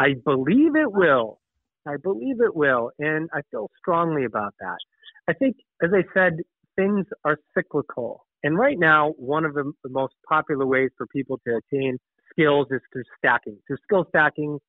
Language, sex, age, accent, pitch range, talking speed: English, male, 30-49, American, 130-165 Hz, 175 wpm